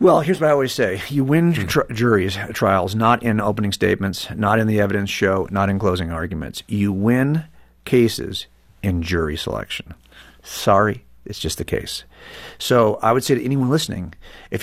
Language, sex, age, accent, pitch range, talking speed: English, male, 50-69, American, 95-125 Hz, 175 wpm